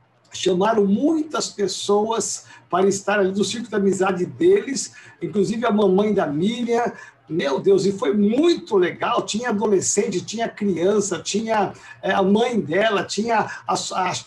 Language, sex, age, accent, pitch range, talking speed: Portuguese, male, 60-79, Brazilian, 190-225 Hz, 145 wpm